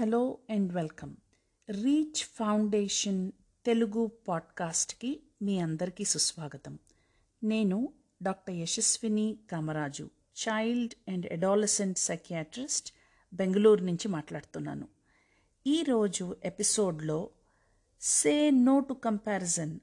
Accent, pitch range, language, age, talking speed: native, 180-230 Hz, Telugu, 50-69, 80 wpm